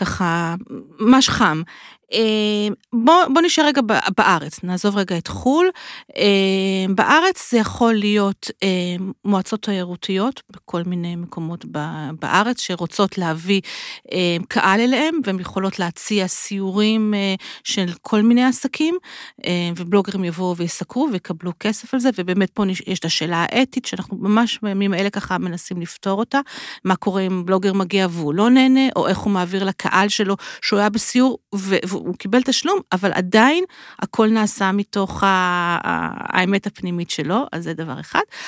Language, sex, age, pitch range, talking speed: Hebrew, female, 40-59, 185-230 Hz, 135 wpm